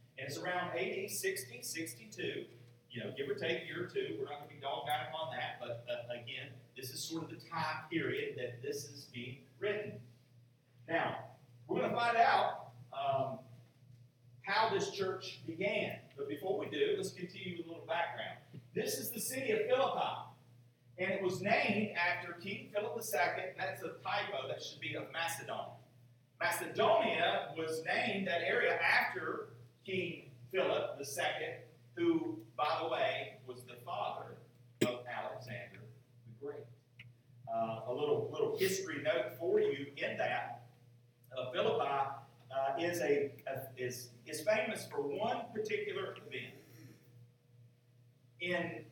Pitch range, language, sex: 120-190 Hz, English, male